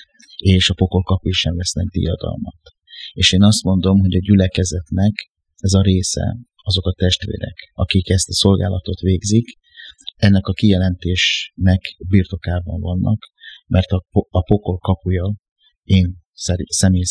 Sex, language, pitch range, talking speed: male, Hungarian, 90-100 Hz, 125 wpm